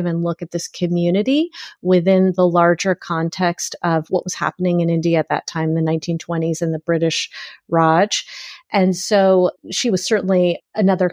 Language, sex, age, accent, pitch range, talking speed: English, female, 30-49, American, 165-190 Hz, 160 wpm